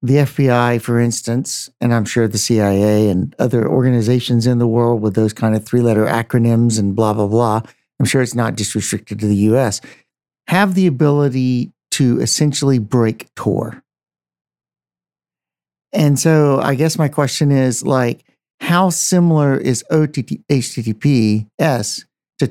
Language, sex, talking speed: English, male, 145 wpm